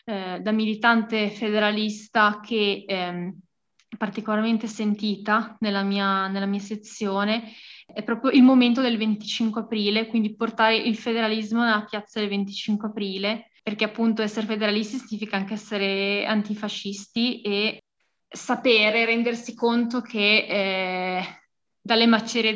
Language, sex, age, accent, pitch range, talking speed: Italian, female, 20-39, native, 205-225 Hz, 115 wpm